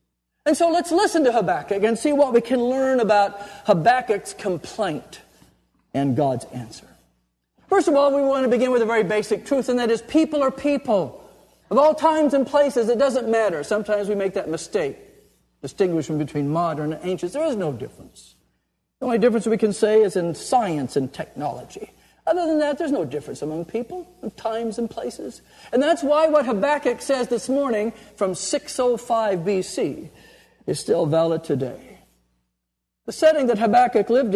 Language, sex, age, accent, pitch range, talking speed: English, male, 50-69, American, 165-260 Hz, 175 wpm